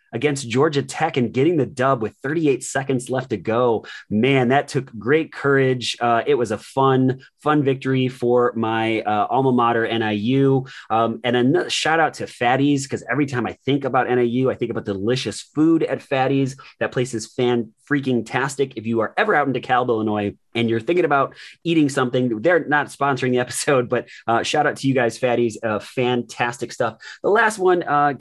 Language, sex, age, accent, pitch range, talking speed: English, male, 30-49, American, 105-135 Hz, 190 wpm